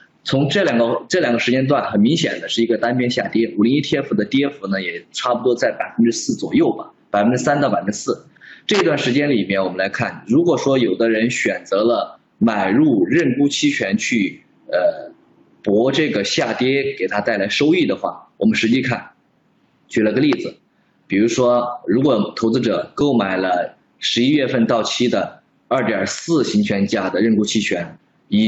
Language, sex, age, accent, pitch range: Chinese, male, 20-39, native, 110-140 Hz